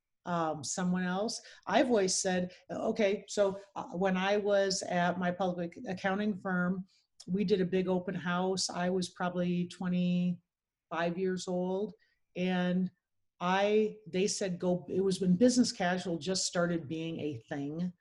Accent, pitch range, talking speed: American, 170-190 Hz, 145 wpm